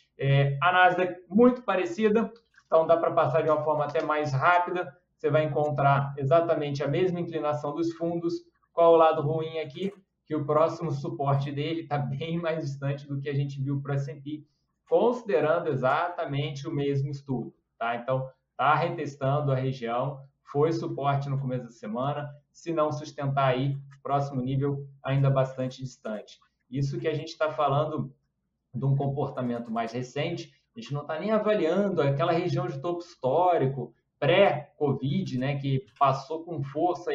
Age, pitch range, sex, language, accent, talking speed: 20-39, 135-165 Hz, male, Portuguese, Brazilian, 160 wpm